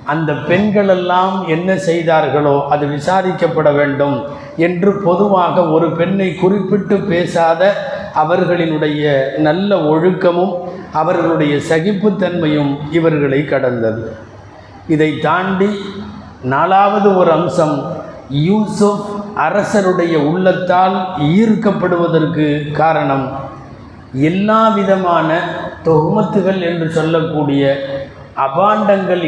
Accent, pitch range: native, 145-185 Hz